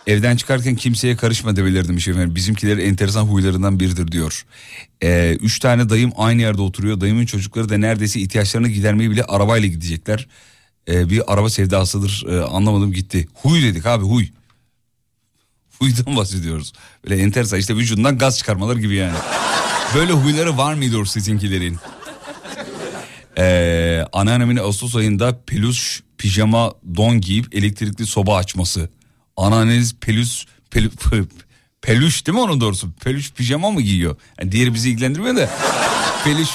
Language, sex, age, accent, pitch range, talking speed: Turkish, male, 40-59, native, 100-130 Hz, 135 wpm